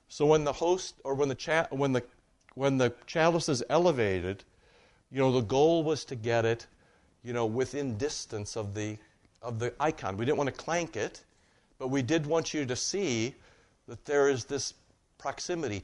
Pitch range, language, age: 110-155 Hz, English, 60-79